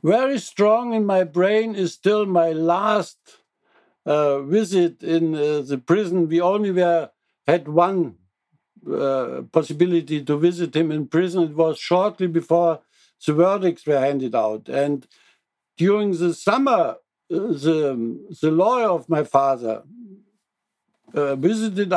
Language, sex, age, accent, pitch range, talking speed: English, male, 60-79, German, 155-190 Hz, 130 wpm